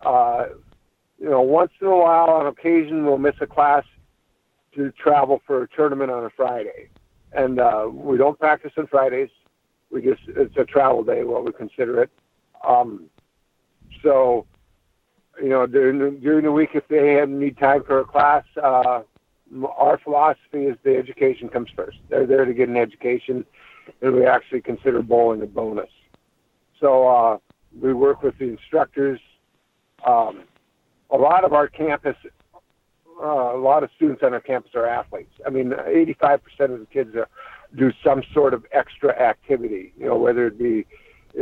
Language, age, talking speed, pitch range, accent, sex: English, 60-79, 170 wpm, 125-185 Hz, American, male